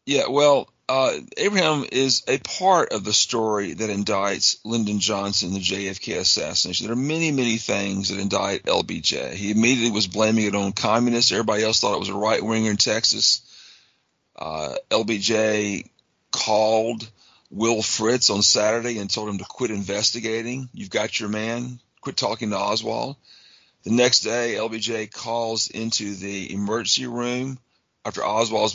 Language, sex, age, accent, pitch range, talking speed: English, male, 40-59, American, 105-125 Hz, 150 wpm